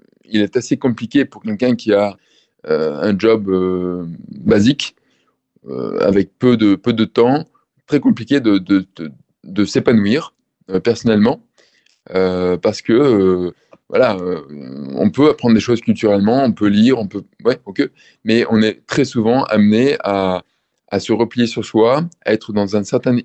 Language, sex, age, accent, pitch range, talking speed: French, male, 20-39, French, 100-120 Hz, 170 wpm